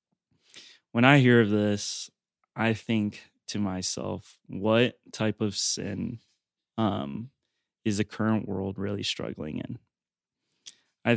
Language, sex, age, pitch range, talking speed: English, male, 20-39, 100-115 Hz, 120 wpm